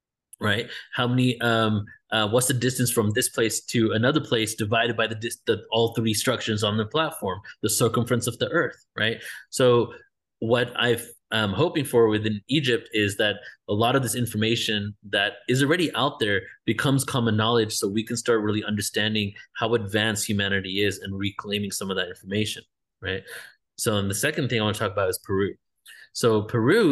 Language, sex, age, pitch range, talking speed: English, male, 20-39, 110-125 Hz, 185 wpm